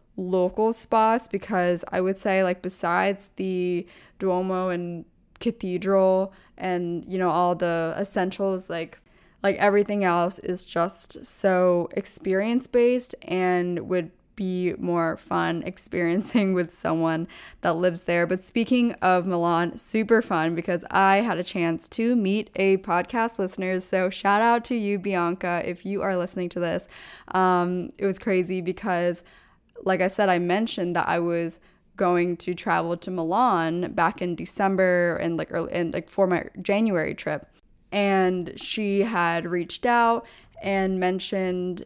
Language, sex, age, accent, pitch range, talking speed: English, female, 20-39, American, 175-205 Hz, 145 wpm